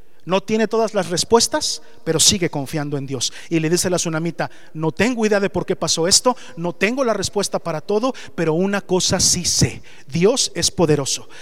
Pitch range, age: 175-225 Hz, 40-59